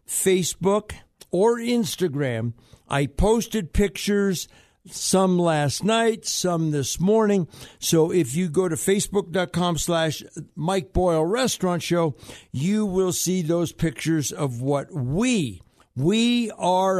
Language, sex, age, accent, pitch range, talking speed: English, male, 60-79, American, 150-190 Hz, 115 wpm